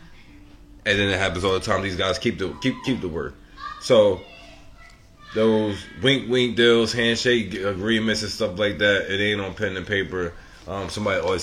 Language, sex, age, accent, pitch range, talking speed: English, male, 20-39, American, 90-105 Hz, 180 wpm